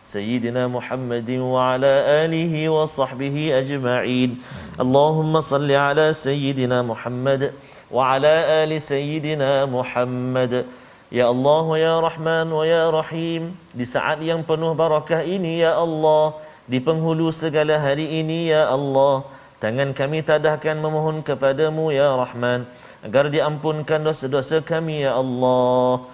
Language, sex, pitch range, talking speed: Malayalam, male, 135-160 Hz, 85 wpm